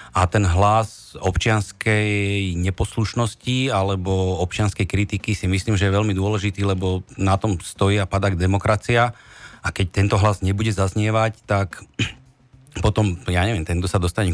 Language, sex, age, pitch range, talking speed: Slovak, male, 40-59, 90-105 Hz, 140 wpm